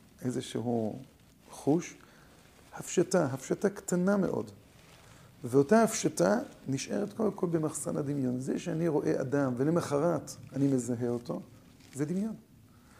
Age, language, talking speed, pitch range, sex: 50-69, Hebrew, 100 wpm, 135-180 Hz, male